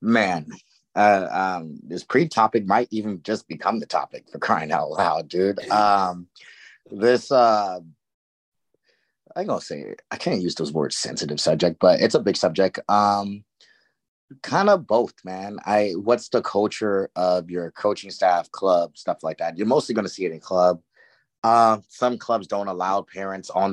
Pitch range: 95-110 Hz